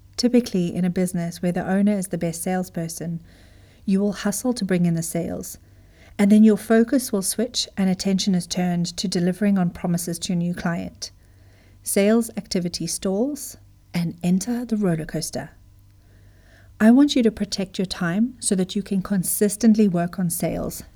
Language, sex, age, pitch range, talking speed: English, female, 40-59, 165-210 Hz, 170 wpm